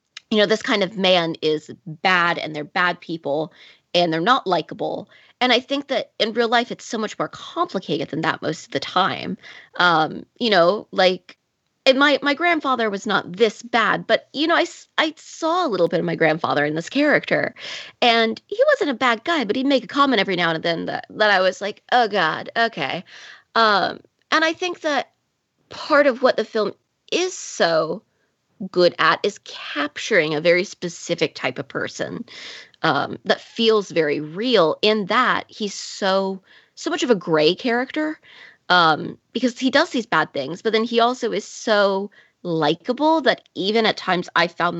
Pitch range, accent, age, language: 170-260 Hz, American, 20-39, English